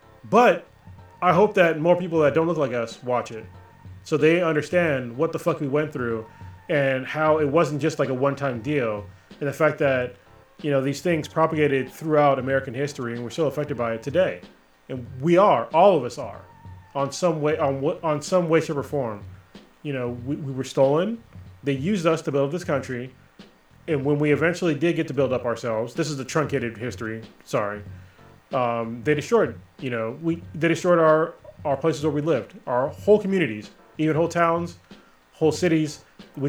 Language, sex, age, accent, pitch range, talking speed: English, male, 20-39, American, 120-160 Hz, 195 wpm